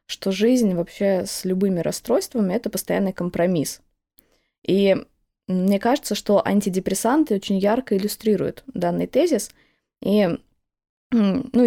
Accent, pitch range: native, 185-225 Hz